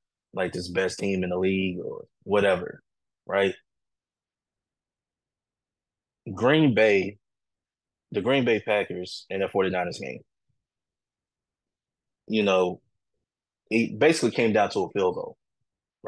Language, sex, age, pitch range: English, male, 20-39, 95-110 Hz